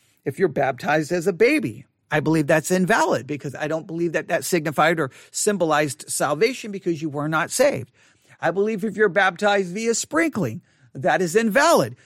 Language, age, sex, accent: English, 40-59, male, American